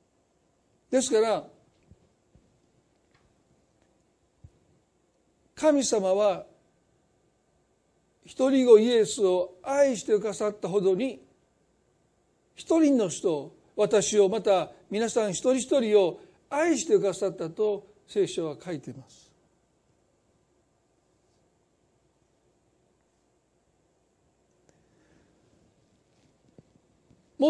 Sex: male